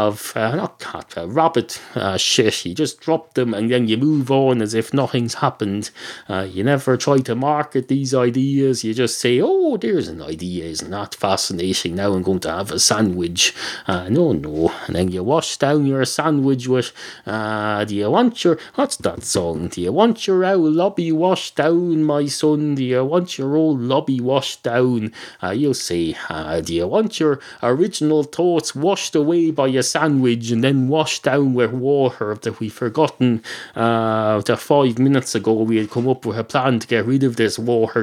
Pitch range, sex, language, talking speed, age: 110-160 Hz, male, English, 200 wpm, 30-49